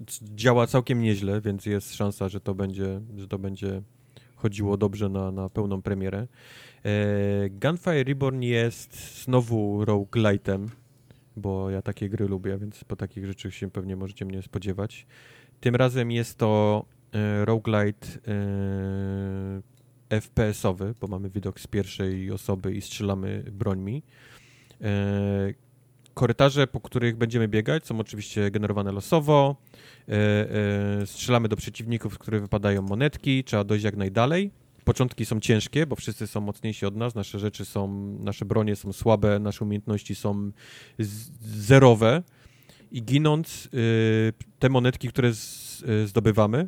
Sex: male